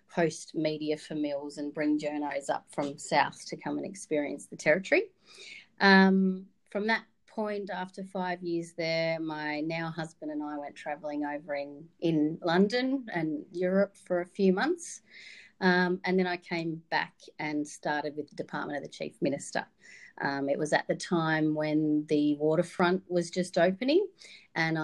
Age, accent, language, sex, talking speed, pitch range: 40-59, Australian, English, female, 165 wpm, 150-185 Hz